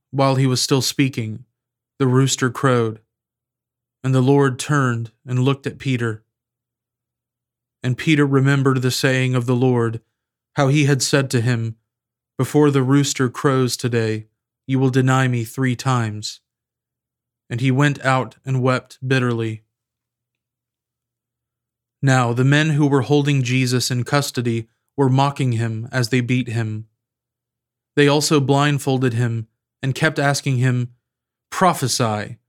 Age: 30-49